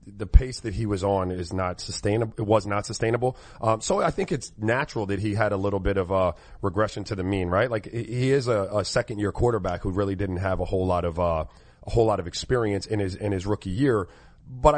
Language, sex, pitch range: English, male, 100-125 Hz